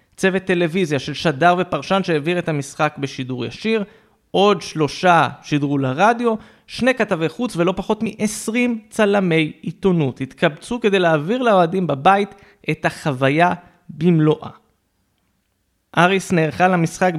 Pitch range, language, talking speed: 140-195 Hz, Hebrew, 115 wpm